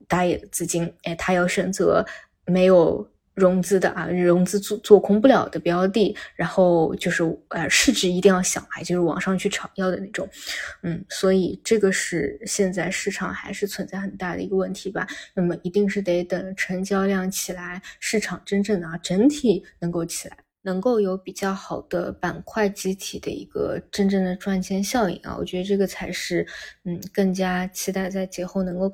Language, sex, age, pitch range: Chinese, female, 20-39, 180-195 Hz